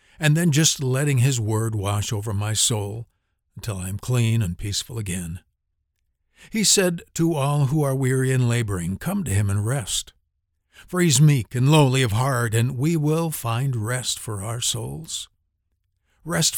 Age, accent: 60-79, American